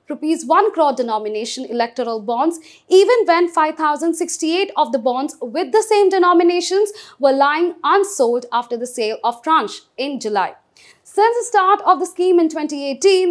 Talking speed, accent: 155 wpm, Indian